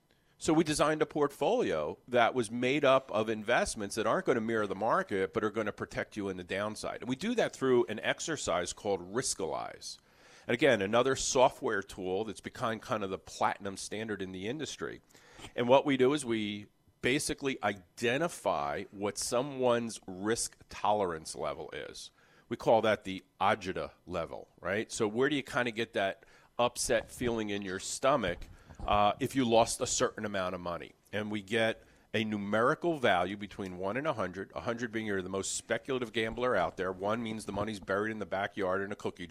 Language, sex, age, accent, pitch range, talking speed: English, male, 40-59, American, 100-130 Hz, 190 wpm